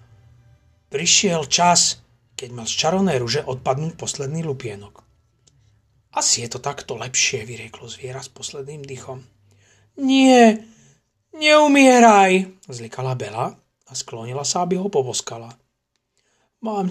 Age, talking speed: 40-59, 110 wpm